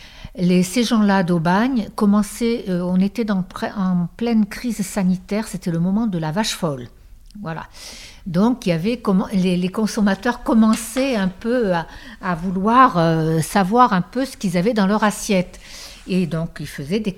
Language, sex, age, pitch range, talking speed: French, female, 60-79, 160-210 Hz, 155 wpm